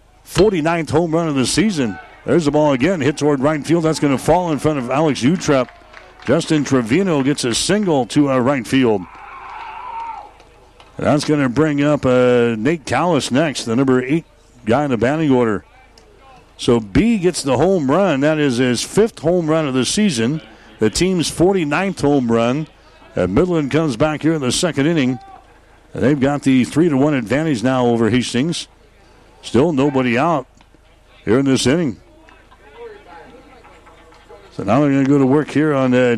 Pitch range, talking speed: 125-155 Hz, 170 wpm